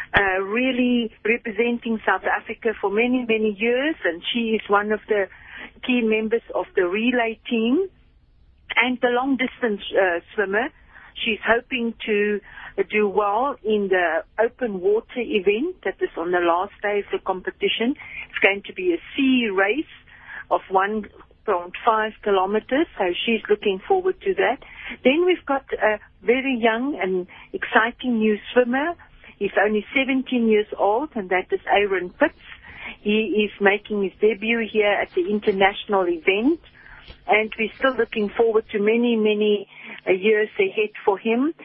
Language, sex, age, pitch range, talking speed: English, female, 50-69, 205-255 Hz, 150 wpm